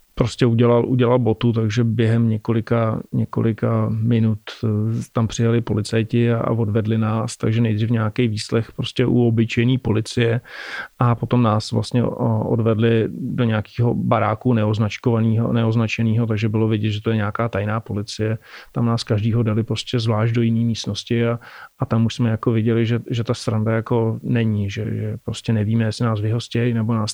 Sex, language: male, Czech